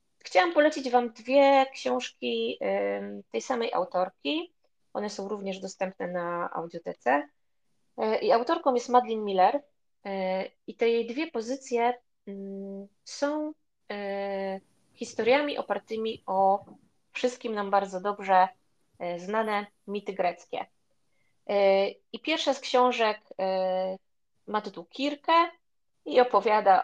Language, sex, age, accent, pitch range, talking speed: Polish, female, 20-39, native, 185-230 Hz, 100 wpm